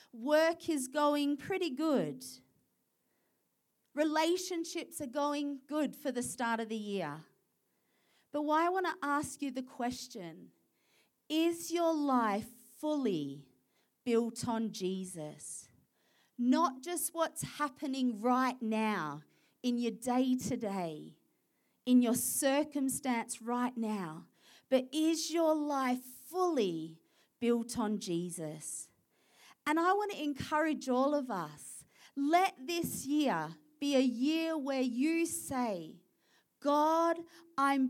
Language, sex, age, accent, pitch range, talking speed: English, female, 40-59, Australian, 230-310 Hz, 115 wpm